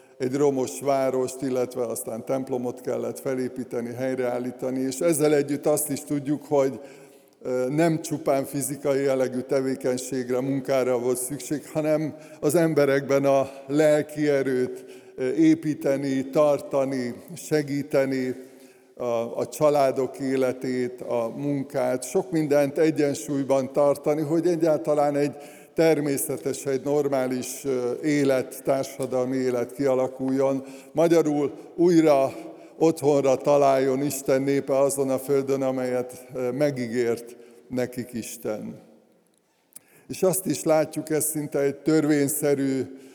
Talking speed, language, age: 105 wpm, Hungarian, 50-69